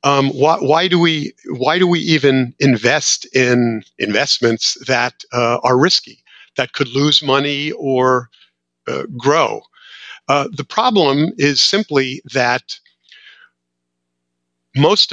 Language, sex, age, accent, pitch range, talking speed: English, male, 50-69, American, 120-145 Hz, 120 wpm